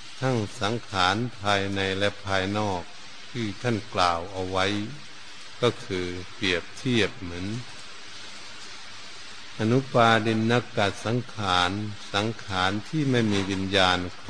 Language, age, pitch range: Thai, 70-89, 100-115 Hz